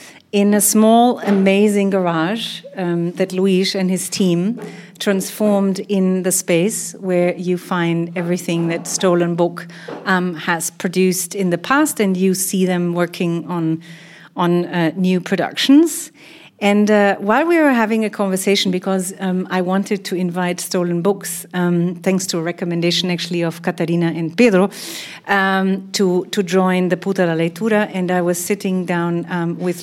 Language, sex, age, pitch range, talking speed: English, female, 40-59, 175-200 Hz, 160 wpm